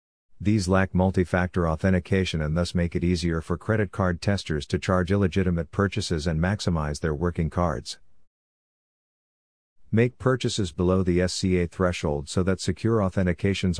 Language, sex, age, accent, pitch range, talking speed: English, male, 50-69, American, 85-100 Hz, 140 wpm